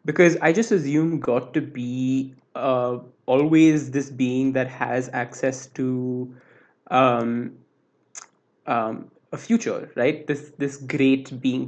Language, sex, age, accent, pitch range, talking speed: English, male, 20-39, Indian, 120-135 Hz, 125 wpm